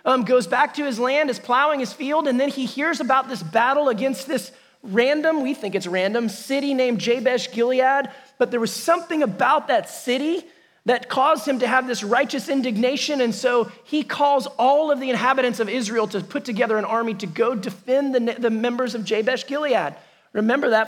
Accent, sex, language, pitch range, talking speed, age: American, male, English, 200-265 Hz, 195 wpm, 30-49